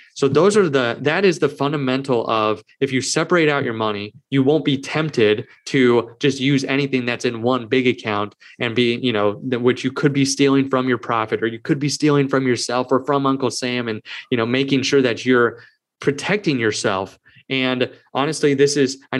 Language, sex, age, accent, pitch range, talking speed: English, male, 20-39, American, 125-145 Hz, 205 wpm